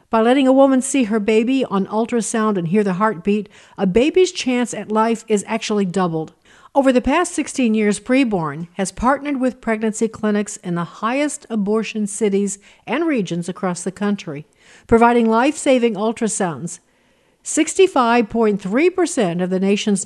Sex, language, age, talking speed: female, English, 50-69, 150 wpm